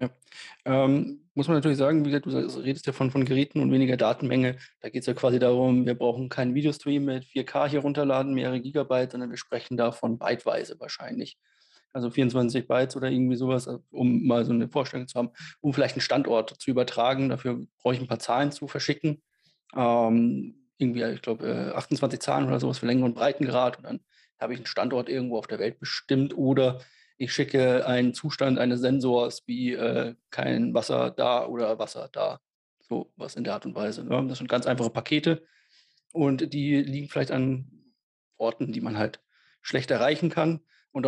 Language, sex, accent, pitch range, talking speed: German, male, German, 125-145 Hz, 190 wpm